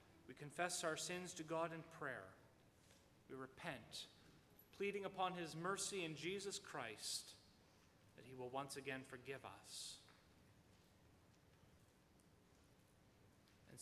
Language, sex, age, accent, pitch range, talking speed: English, male, 30-49, American, 140-215 Hz, 110 wpm